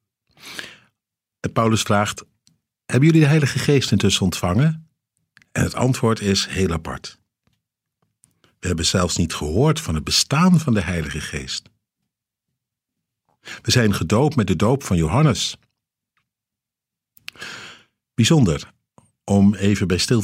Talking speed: 120 wpm